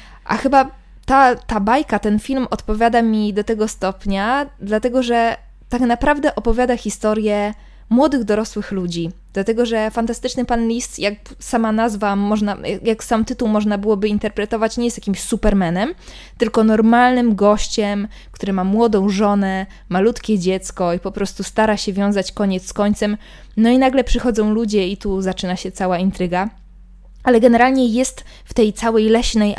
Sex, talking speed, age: female, 150 wpm, 20-39